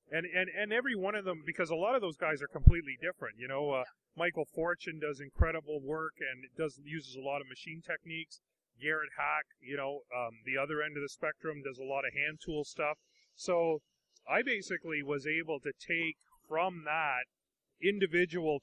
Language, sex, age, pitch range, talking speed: English, male, 30-49, 140-170 Hz, 195 wpm